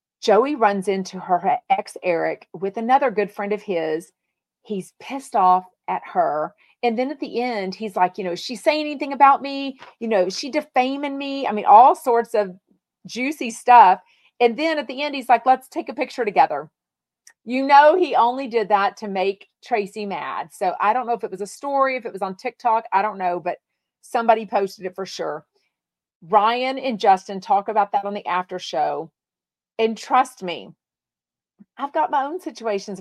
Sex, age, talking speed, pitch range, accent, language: female, 40-59, 195 wpm, 195-270 Hz, American, English